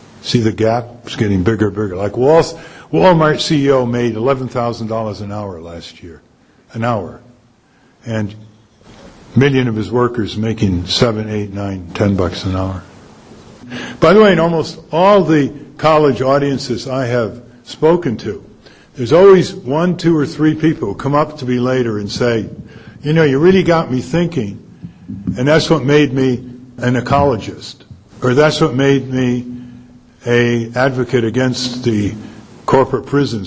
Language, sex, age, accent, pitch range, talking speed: English, male, 60-79, American, 115-155 Hz, 160 wpm